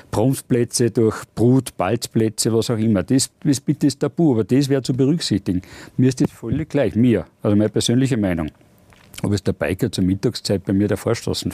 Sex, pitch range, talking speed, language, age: male, 105-130 Hz, 190 wpm, German, 50-69